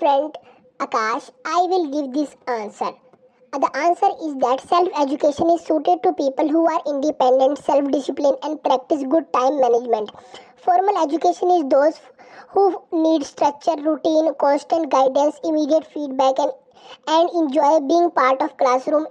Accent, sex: Indian, male